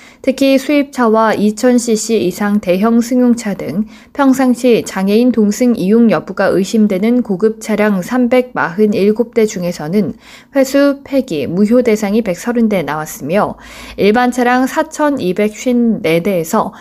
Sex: female